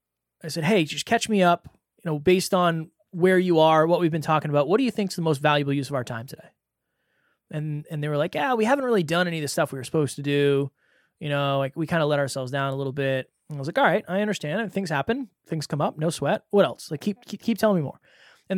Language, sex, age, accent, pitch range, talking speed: English, male, 20-39, American, 145-190 Hz, 285 wpm